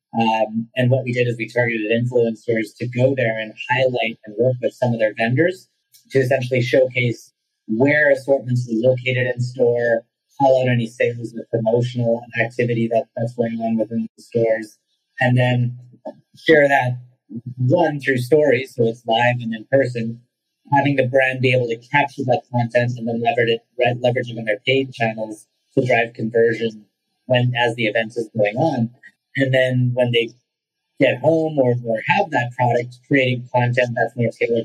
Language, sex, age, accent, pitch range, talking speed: English, male, 30-49, American, 115-130 Hz, 175 wpm